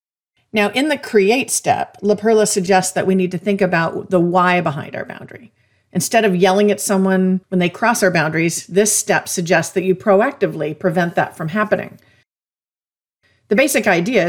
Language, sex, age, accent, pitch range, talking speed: English, female, 40-59, American, 175-205 Hz, 170 wpm